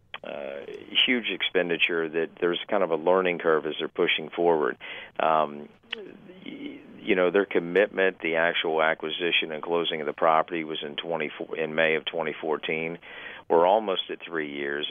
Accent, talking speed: American, 155 wpm